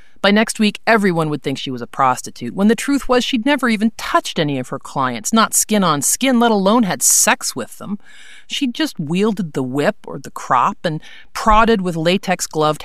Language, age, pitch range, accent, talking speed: English, 40-59, 150-225 Hz, American, 205 wpm